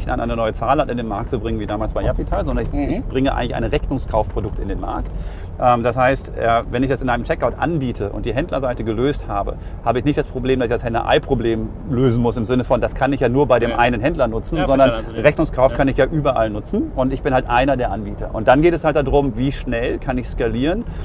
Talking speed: 245 wpm